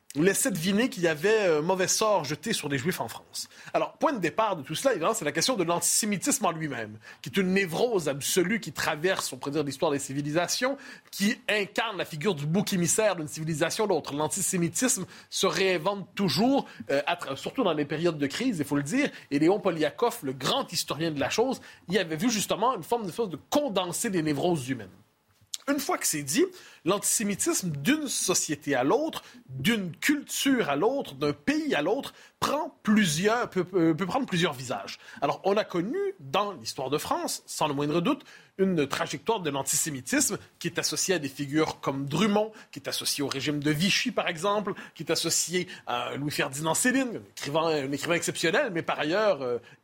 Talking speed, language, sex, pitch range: 195 wpm, French, male, 150-215 Hz